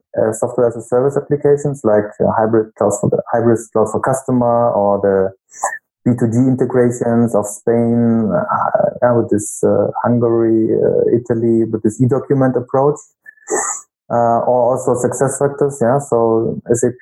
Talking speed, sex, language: 160 wpm, male, English